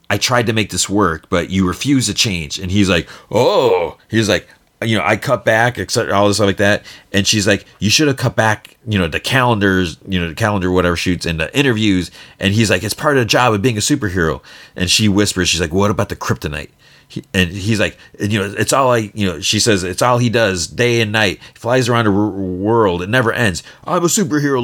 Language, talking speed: English, 250 wpm